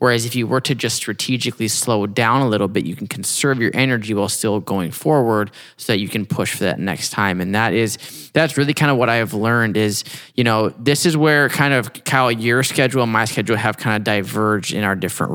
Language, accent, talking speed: English, American, 245 wpm